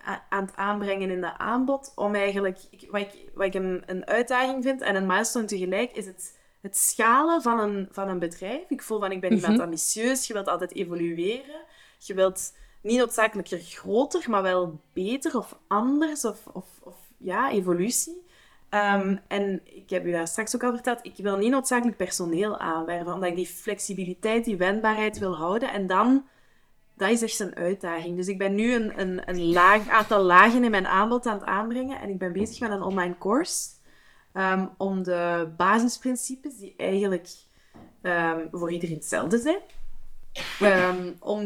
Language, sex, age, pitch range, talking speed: Dutch, female, 20-39, 180-220 Hz, 170 wpm